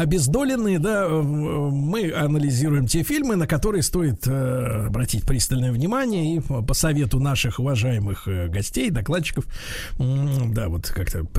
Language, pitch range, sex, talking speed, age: Russian, 135-195 Hz, male, 115 wpm, 50-69